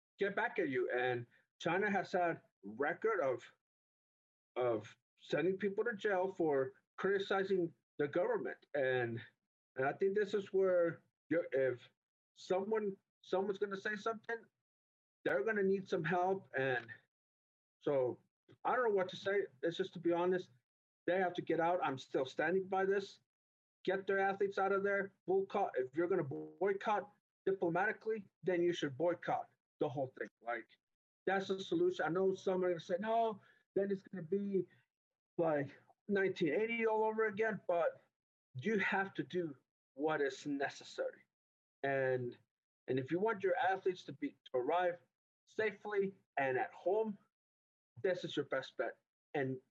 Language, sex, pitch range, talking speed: English, male, 165-205 Hz, 160 wpm